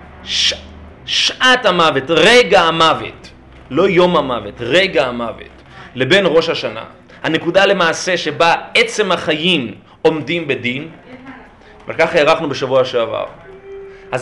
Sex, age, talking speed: male, 30-49, 105 wpm